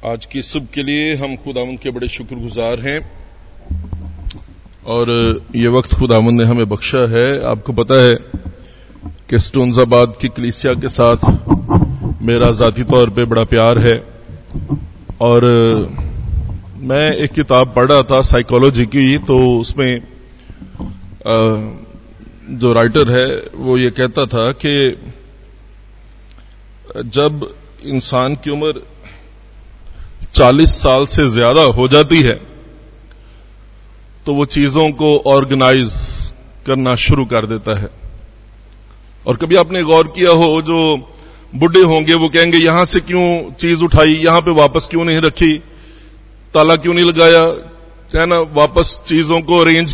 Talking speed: 125 wpm